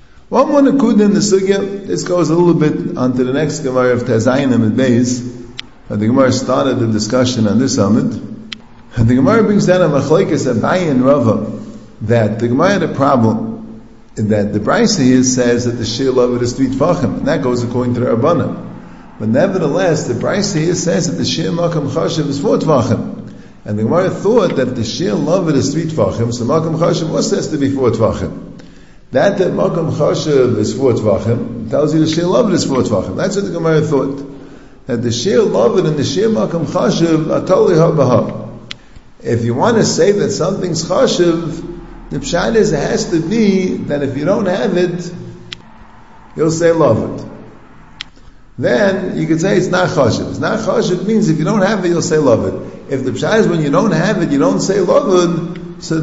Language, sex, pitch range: English, male, 125-180 Hz